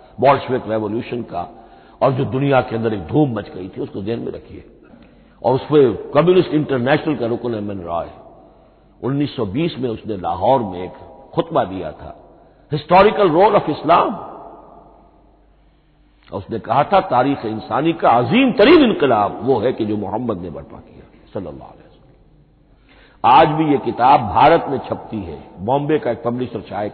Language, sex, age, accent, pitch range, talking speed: Hindi, male, 60-79, native, 105-140 Hz, 155 wpm